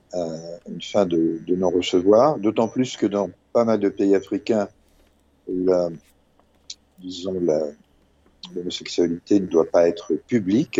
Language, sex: French, male